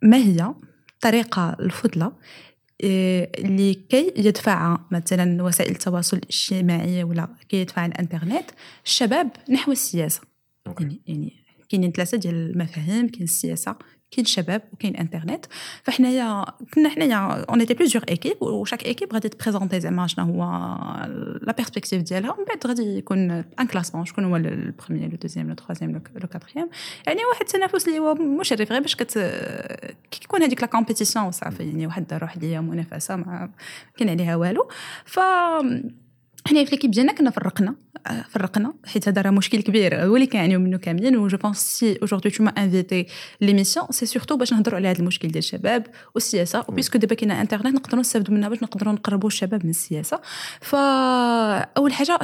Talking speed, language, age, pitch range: 115 wpm, Arabic, 20-39, 175-245 Hz